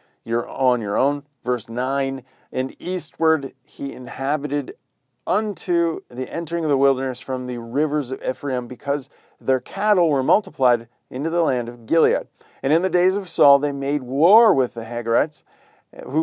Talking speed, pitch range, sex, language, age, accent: 165 wpm, 125-175 Hz, male, English, 40-59, American